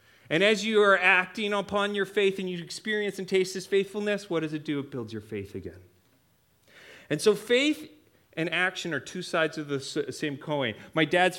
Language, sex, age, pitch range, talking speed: English, male, 30-49, 110-165 Hz, 200 wpm